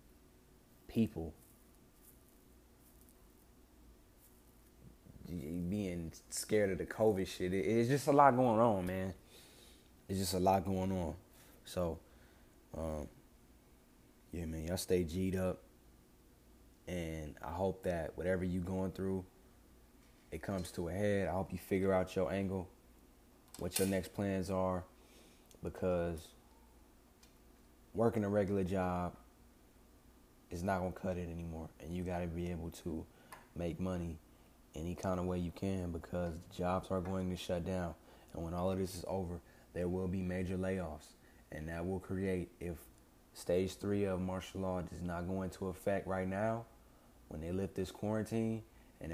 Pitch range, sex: 80-95 Hz, male